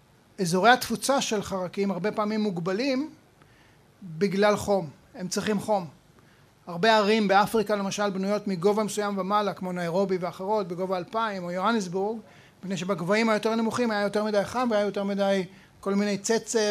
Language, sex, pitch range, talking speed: Hebrew, male, 190-225 Hz, 145 wpm